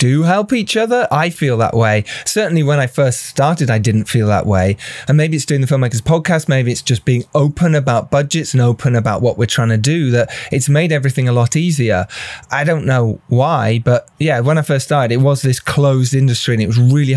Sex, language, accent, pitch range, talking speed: male, English, British, 120-155 Hz, 230 wpm